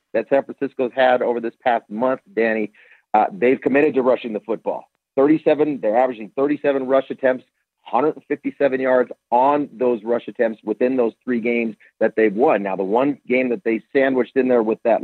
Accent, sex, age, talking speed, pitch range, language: American, male, 40-59, 185 wpm, 115-135 Hz, English